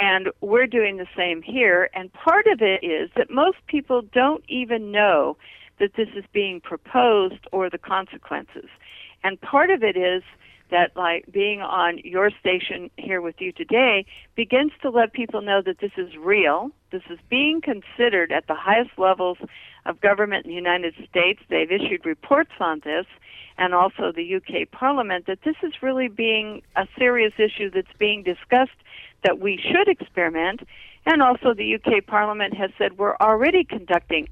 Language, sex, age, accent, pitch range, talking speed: English, female, 50-69, American, 185-255 Hz, 170 wpm